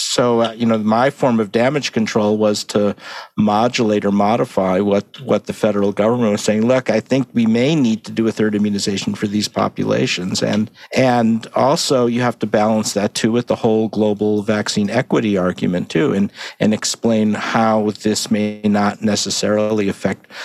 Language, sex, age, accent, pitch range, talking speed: English, male, 50-69, American, 105-125 Hz, 180 wpm